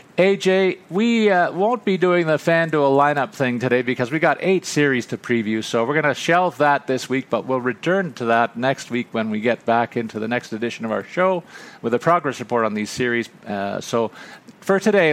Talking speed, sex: 220 wpm, male